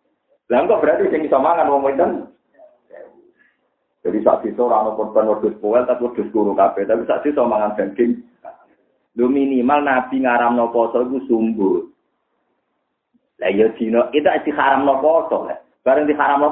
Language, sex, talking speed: Indonesian, male, 140 wpm